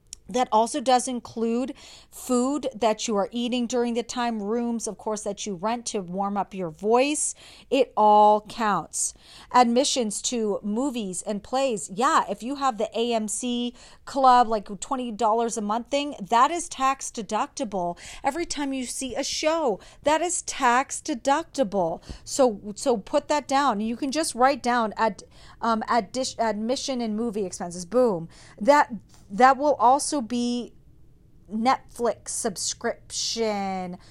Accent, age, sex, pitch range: American, 40-59, female, 210-265 Hz